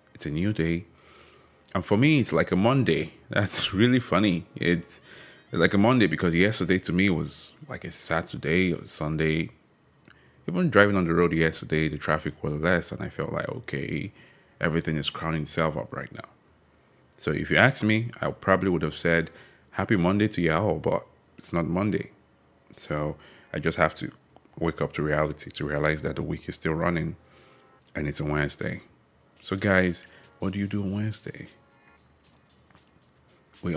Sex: male